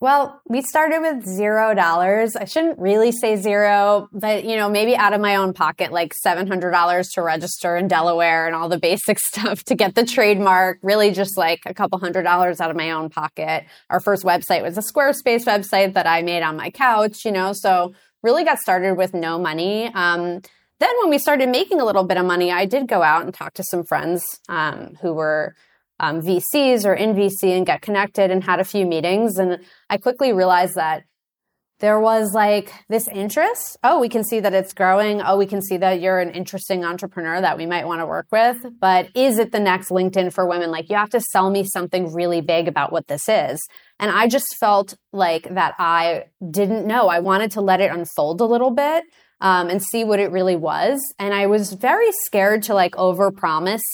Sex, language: female, English